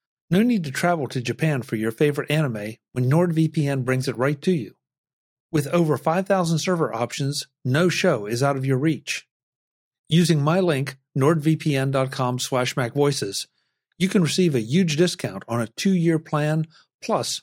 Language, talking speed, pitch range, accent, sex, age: English, 150 wpm, 125-165 Hz, American, male, 50-69